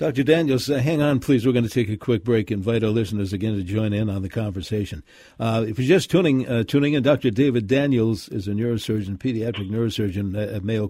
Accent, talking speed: American, 225 wpm